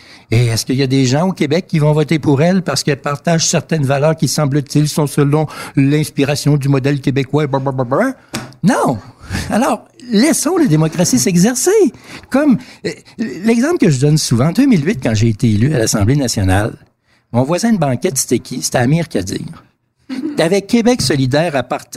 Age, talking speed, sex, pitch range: 60-79, 190 wpm, male, 120-170 Hz